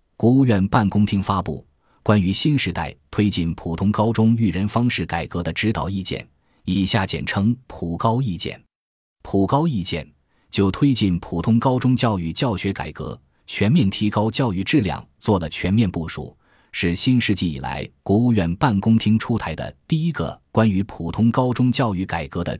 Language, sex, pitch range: Chinese, male, 85-115 Hz